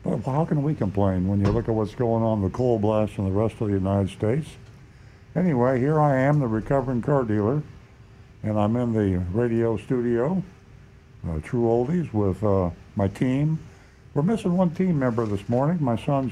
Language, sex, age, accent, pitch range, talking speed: English, male, 60-79, American, 100-125 Hz, 190 wpm